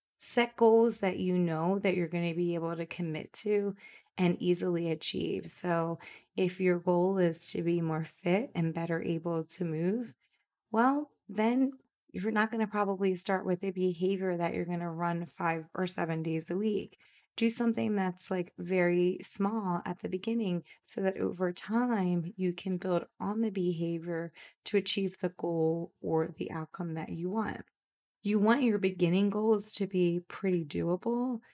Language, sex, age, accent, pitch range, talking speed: English, female, 20-39, American, 170-200 Hz, 175 wpm